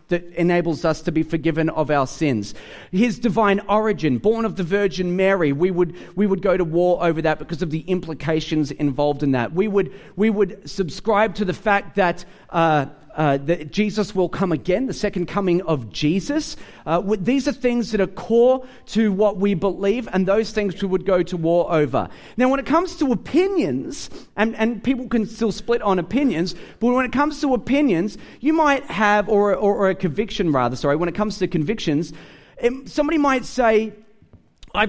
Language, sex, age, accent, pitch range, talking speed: English, male, 40-59, Australian, 175-220 Hz, 195 wpm